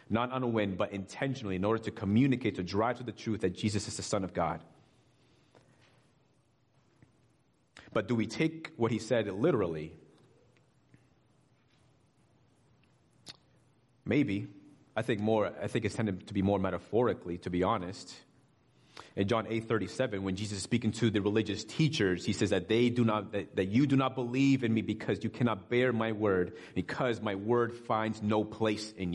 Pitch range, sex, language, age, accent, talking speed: 100-120 Hz, male, English, 30-49, American, 175 wpm